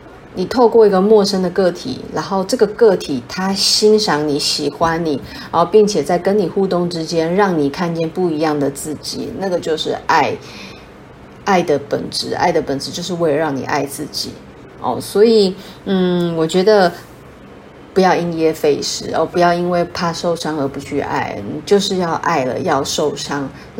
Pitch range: 160-205 Hz